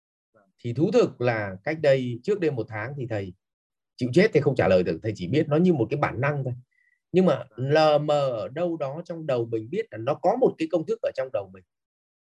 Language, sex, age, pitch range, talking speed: English, male, 30-49, 115-170 Hz, 245 wpm